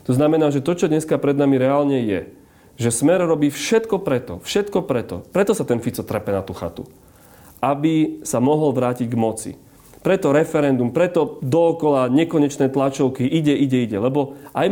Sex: male